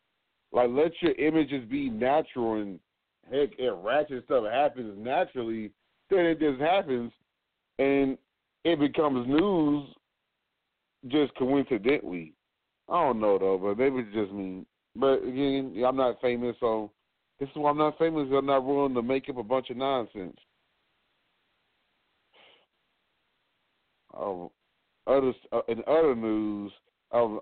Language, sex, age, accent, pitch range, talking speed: English, male, 40-59, American, 120-155 Hz, 130 wpm